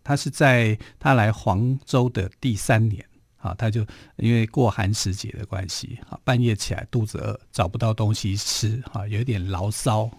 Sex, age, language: male, 50-69, Chinese